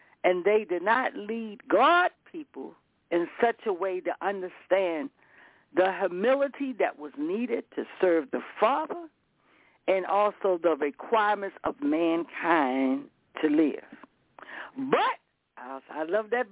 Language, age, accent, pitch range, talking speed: English, 60-79, American, 190-245 Hz, 125 wpm